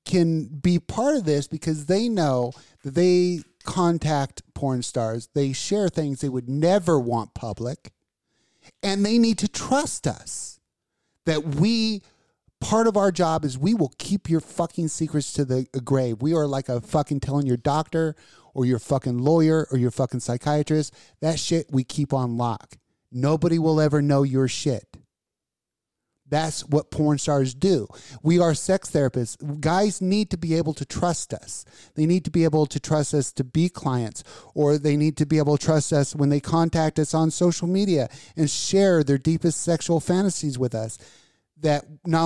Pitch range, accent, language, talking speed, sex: 135-170 Hz, American, English, 180 wpm, male